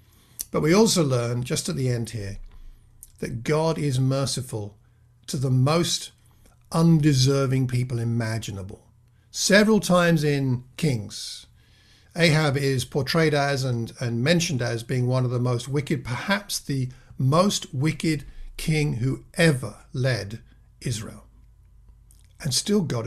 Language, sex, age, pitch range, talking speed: English, male, 50-69, 120-160 Hz, 125 wpm